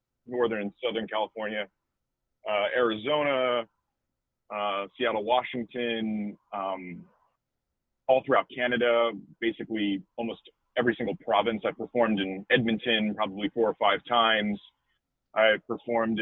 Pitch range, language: 100-125 Hz, English